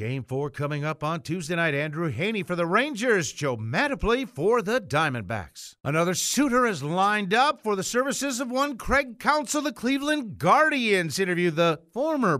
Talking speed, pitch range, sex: 170 wpm, 145-205 Hz, male